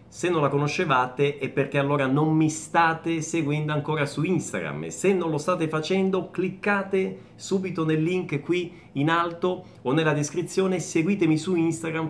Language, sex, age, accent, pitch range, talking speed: Italian, male, 30-49, native, 145-200 Hz, 165 wpm